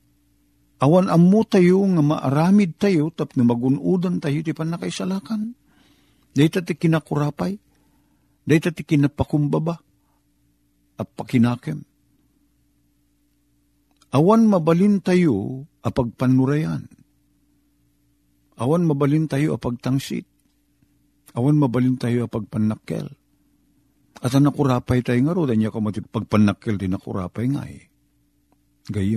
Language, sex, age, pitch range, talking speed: Filipino, male, 50-69, 120-170 Hz, 95 wpm